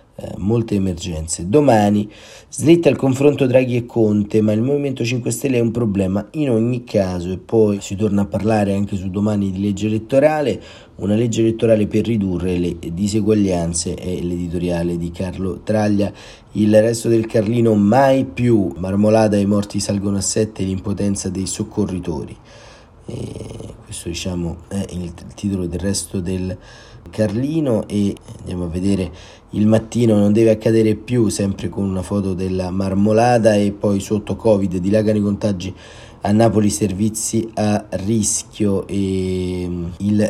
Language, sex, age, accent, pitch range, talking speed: Italian, male, 40-59, native, 95-110 Hz, 145 wpm